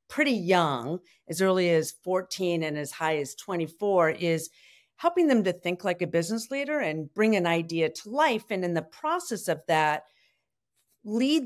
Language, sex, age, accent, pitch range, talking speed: English, female, 50-69, American, 160-210 Hz, 175 wpm